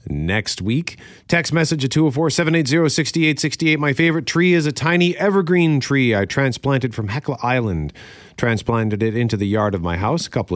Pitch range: 105-155 Hz